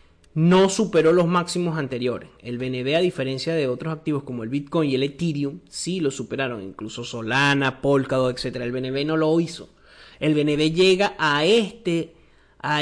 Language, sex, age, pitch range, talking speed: Spanish, male, 30-49, 125-165 Hz, 170 wpm